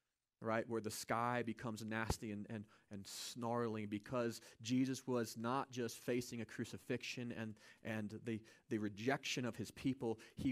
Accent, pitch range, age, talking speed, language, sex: American, 120-200 Hz, 30-49, 155 wpm, English, male